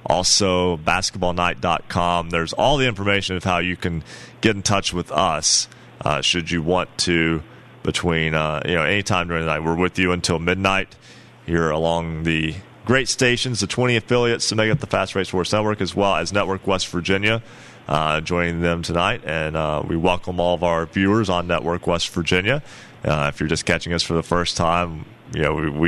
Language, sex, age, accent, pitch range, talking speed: English, male, 30-49, American, 85-95 Hz, 195 wpm